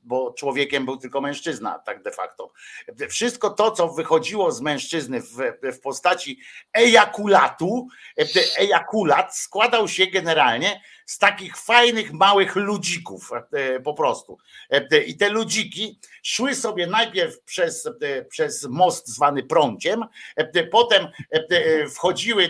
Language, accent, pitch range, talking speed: Polish, native, 155-225 Hz, 110 wpm